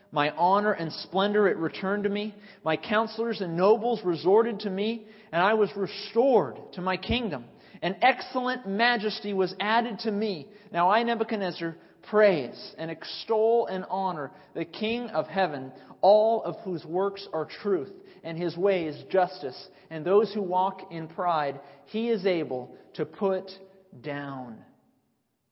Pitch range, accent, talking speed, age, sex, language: 150-205 Hz, American, 150 wpm, 40-59, male, English